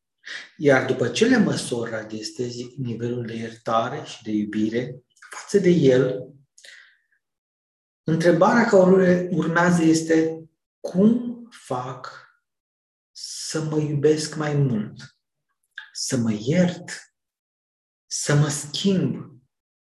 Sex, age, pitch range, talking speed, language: male, 50-69, 125-165 Hz, 95 wpm, Romanian